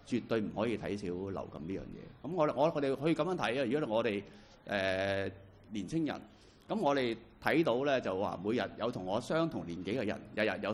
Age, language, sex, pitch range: 30-49, Chinese, male, 95-115 Hz